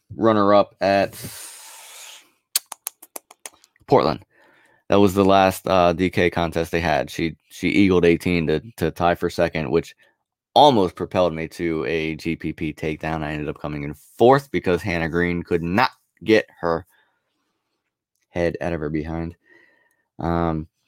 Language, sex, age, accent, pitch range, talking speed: English, male, 20-39, American, 85-100 Hz, 140 wpm